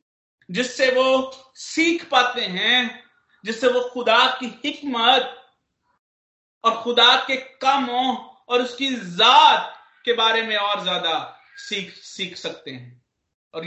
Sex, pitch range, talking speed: male, 165-220 Hz, 110 wpm